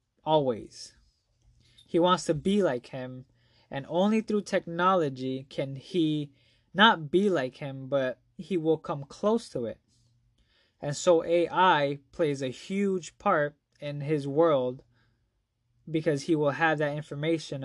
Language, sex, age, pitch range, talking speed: English, male, 20-39, 120-165 Hz, 135 wpm